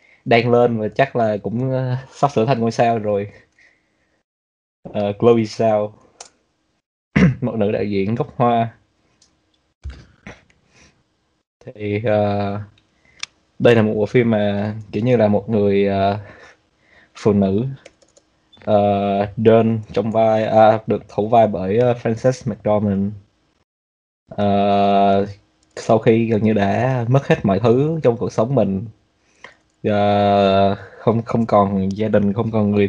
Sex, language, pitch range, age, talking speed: male, Vietnamese, 100-115 Hz, 20-39, 130 wpm